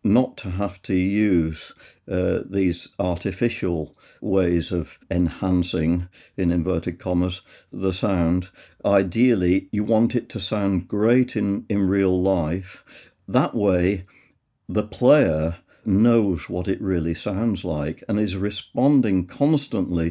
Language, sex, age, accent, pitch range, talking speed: English, male, 50-69, British, 90-110 Hz, 120 wpm